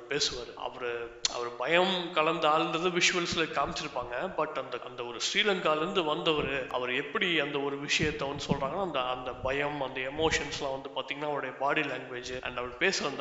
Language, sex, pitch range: Thai, male, 130-160 Hz